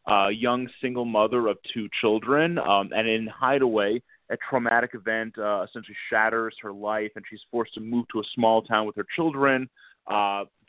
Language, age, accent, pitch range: English, 30-49, American, 110-130 Hz